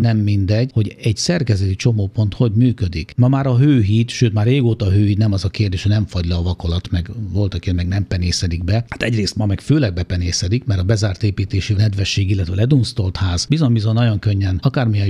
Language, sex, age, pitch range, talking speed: Hungarian, male, 50-69, 100-120 Hz, 205 wpm